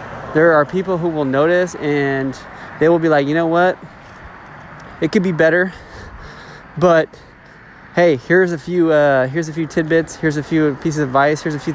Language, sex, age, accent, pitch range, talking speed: English, male, 20-39, American, 135-165 Hz, 190 wpm